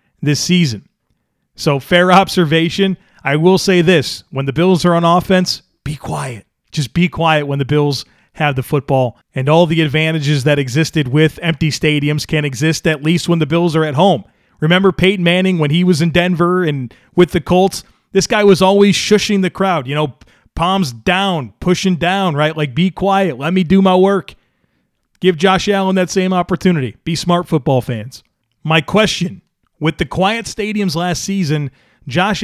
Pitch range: 145-185 Hz